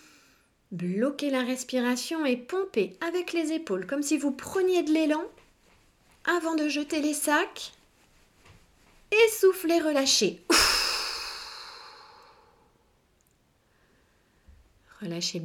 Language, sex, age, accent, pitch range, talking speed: French, female, 30-49, French, 180-275 Hz, 95 wpm